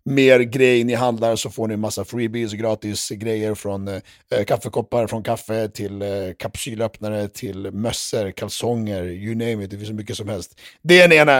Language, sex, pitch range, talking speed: English, male, 110-155 Hz, 175 wpm